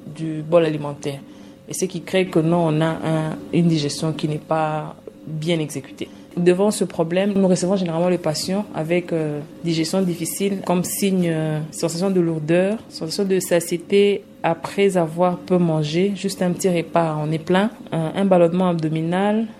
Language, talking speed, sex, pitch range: French, 170 wpm, female, 160-190 Hz